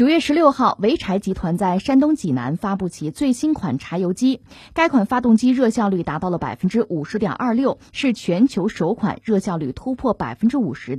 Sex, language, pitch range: female, Chinese, 180-265 Hz